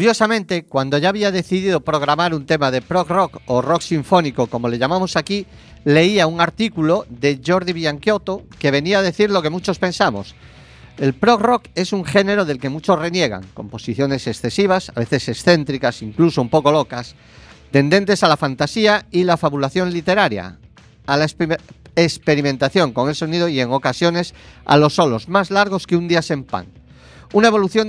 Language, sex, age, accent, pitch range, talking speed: Spanish, male, 40-59, Spanish, 135-185 Hz, 170 wpm